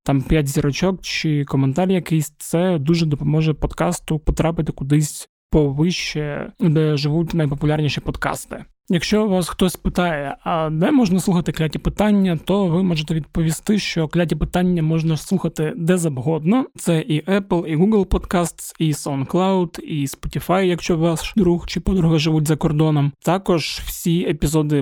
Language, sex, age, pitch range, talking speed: Ukrainian, male, 20-39, 145-175 Hz, 140 wpm